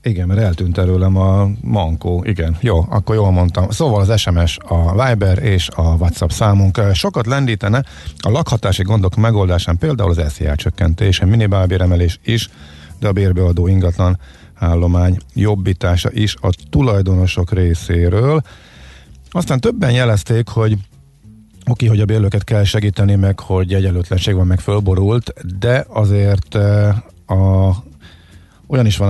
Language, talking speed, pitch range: Hungarian, 130 wpm, 90-110 Hz